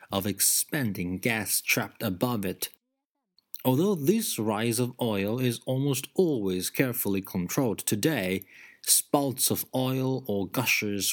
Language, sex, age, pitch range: Chinese, male, 30-49, 100-140 Hz